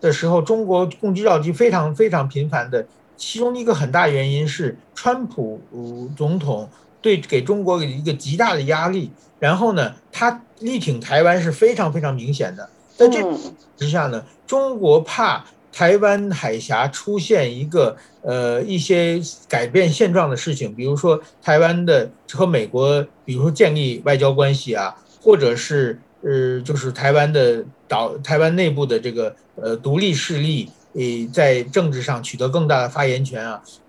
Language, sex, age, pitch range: Chinese, male, 50-69, 140-210 Hz